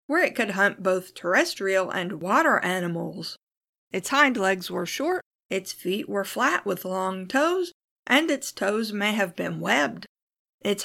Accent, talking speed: American, 160 wpm